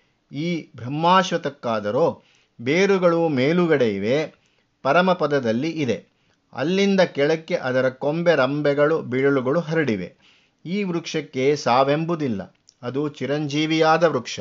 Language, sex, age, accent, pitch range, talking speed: Kannada, male, 50-69, native, 135-165 Hz, 80 wpm